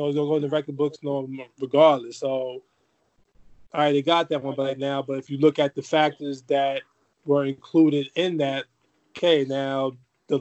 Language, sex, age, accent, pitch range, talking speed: English, male, 20-39, American, 135-150 Hz, 190 wpm